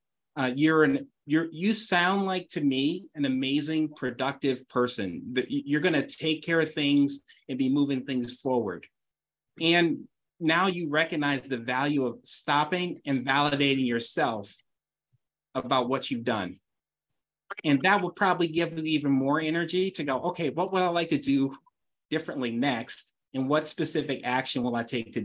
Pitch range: 135-165 Hz